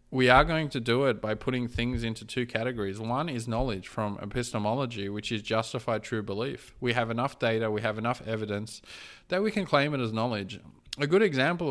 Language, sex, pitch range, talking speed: English, male, 110-140 Hz, 205 wpm